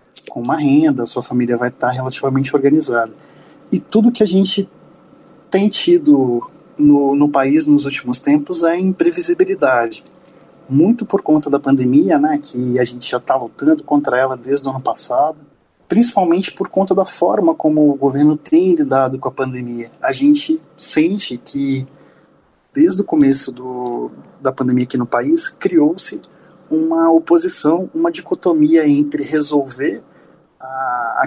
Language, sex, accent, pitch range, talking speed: Portuguese, male, Brazilian, 135-210 Hz, 145 wpm